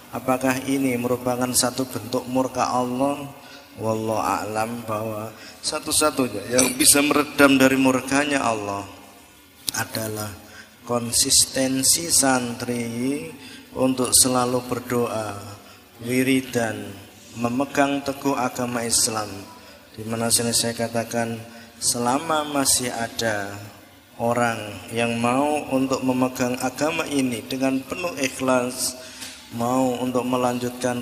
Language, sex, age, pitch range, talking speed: Indonesian, male, 20-39, 115-130 Hz, 90 wpm